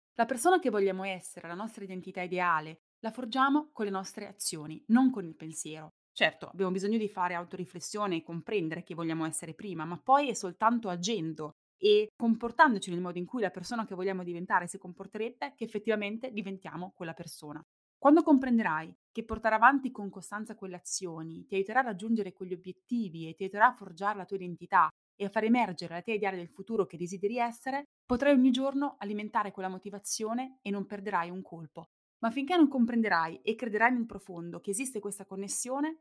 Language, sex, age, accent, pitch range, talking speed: Italian, female, 20-39, native, 180-230 Hz, 185 wpm